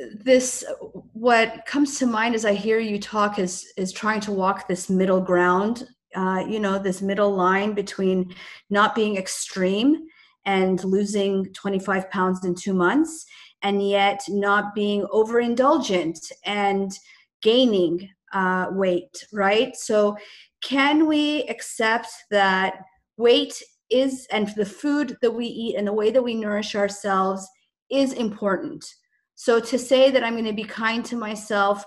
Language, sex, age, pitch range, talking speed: English, female, 30-49, 190-235 Hz, 145 wpm